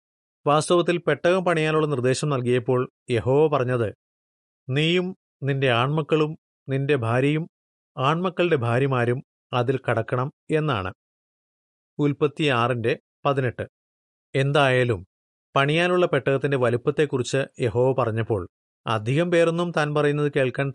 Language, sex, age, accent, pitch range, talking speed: Malayalam, male, 30-49, native, 120-160 Hz, 90 wpm